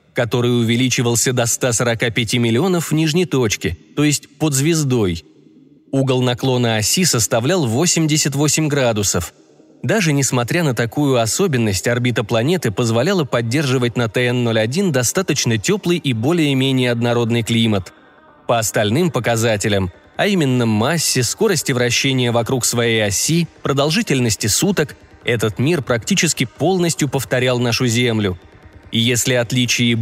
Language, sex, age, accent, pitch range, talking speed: Russian, male, 20-39, native, 115-155 Hz, 115 wpm